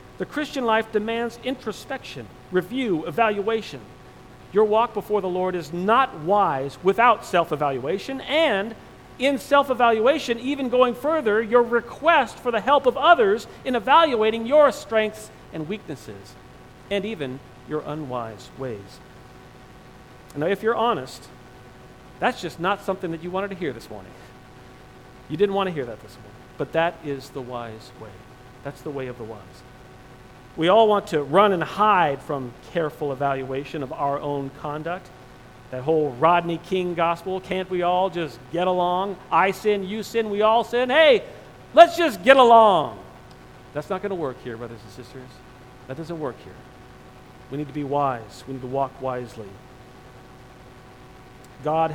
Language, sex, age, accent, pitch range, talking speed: English, male, 40-59, American, 125-205 Hz, 160 wpm